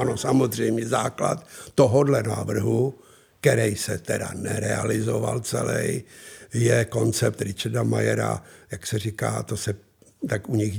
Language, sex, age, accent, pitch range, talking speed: Czech, male, 60-79, native, 110-140 Hz, 120 wpm